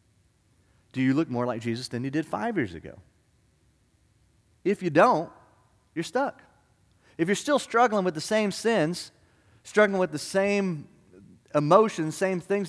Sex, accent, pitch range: male, American, 110-165 Hz